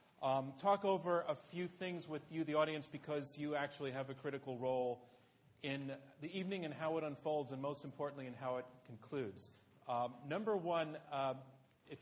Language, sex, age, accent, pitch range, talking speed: English, male, 40-59, American, 140-170 Hz, 180 wpm